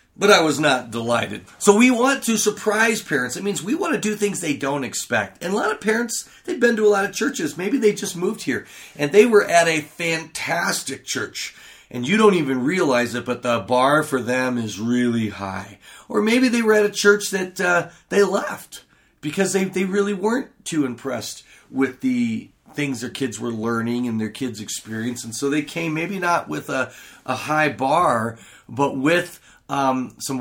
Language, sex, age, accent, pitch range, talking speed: English, male, 40-59, American, 120-170 Hz, 200 wpm